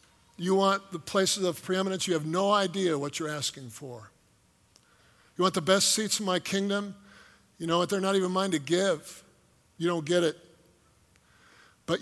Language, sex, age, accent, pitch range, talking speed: English, male, 50-69, American, 150-195 Hz, 180 wpm